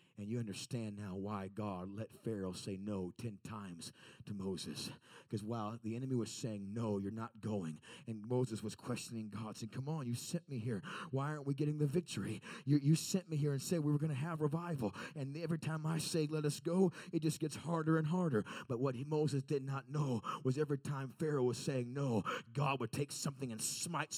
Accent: American